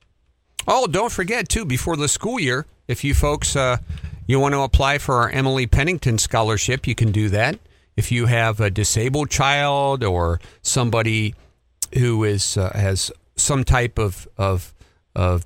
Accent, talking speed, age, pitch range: American, 165 wpm, 50-69, 100-130 Hz